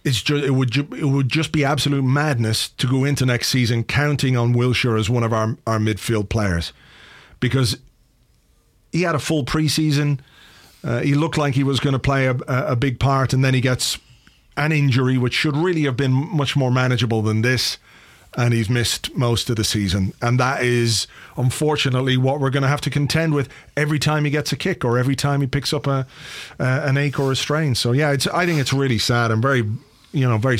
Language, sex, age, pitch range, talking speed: English, male, 40-59, 115-140 Hz, 220 wpm